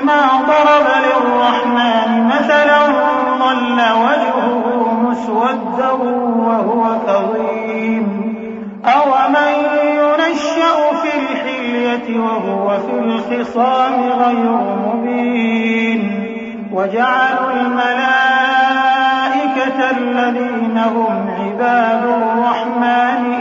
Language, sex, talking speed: Arabic, male, 65 wpm